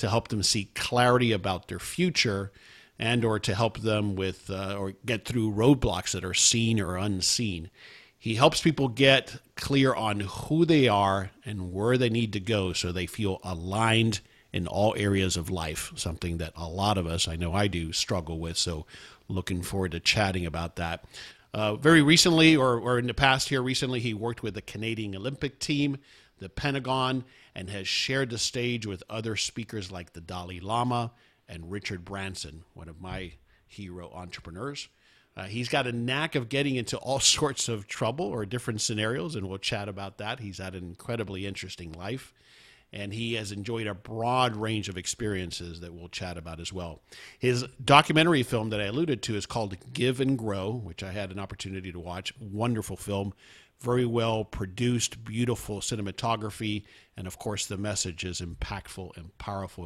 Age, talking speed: 50-69, 180 wpm